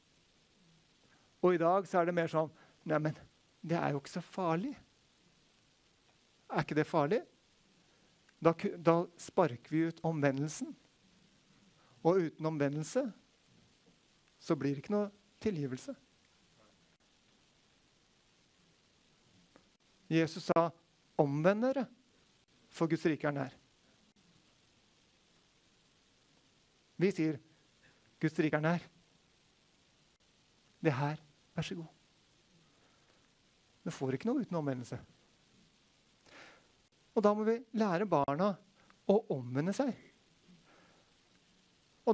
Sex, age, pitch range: male, 60-79, 160-220 Hz